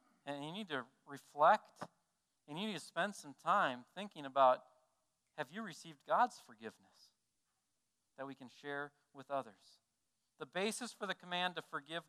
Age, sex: 40-59, male